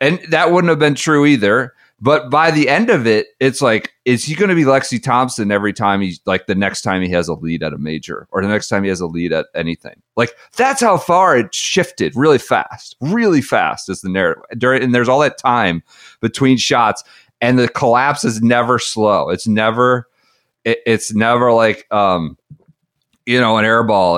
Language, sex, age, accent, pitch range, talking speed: English, male, 40-59, American, 105-130 Hz, 205 wpm